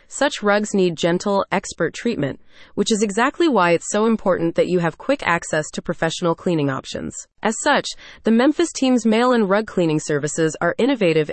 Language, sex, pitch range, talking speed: English, female, 165-225 Hz, 175 wpm